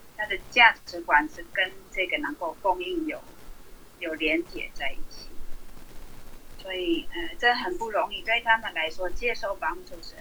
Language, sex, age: Chinese, female, 30-49